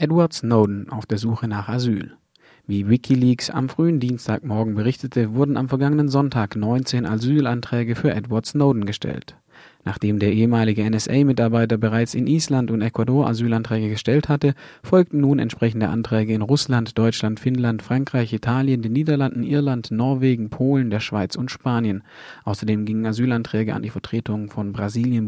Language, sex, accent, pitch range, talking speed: German, male, German, 110-135 Hz, 145 wpm